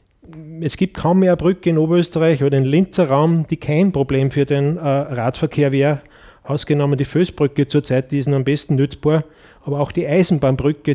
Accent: German